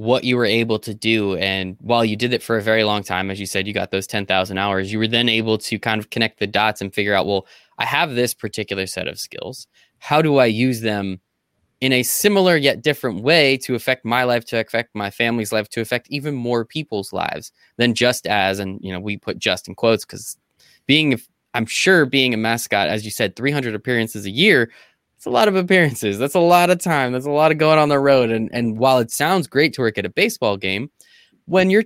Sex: male